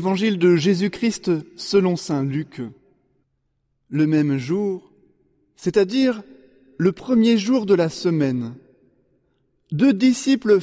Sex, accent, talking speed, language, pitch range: male, French, 100 wpm, French, 145-200 Hz